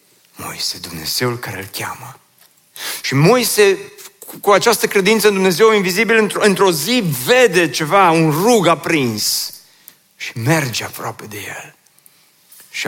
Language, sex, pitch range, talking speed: Romanian, male, 110-150 Hz, 130 wpm